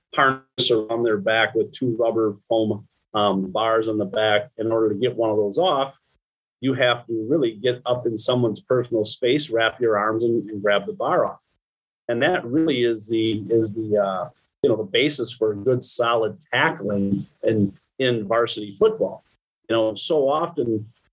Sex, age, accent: male, 40-59, American